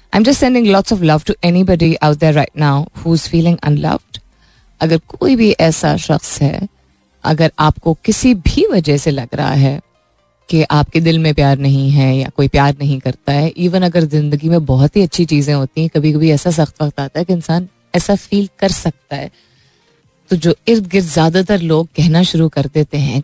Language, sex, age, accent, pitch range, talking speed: Hindi, female, 30-49, native, 145-185 Hz, 165 wpm